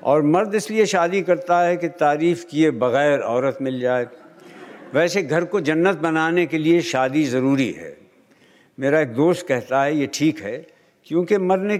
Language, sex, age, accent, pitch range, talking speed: Hindi, male, 60-79, native, 140-195 Hz, 170 wpm